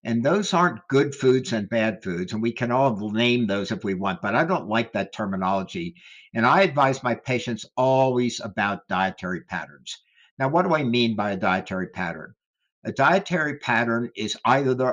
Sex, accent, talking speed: male, American, 185 wpm